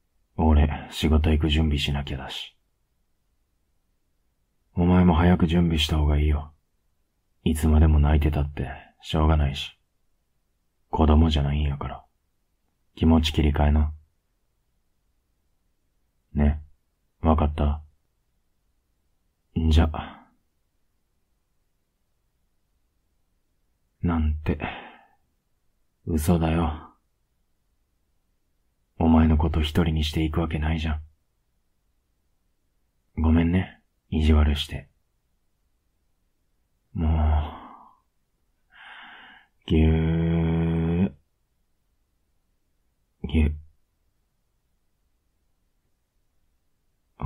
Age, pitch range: 40-59, 75-80 Hz